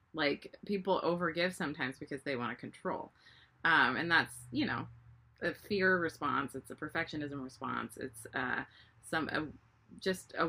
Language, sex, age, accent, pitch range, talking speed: English, female, 20-39, American, 130-175 Hz, 155 wpm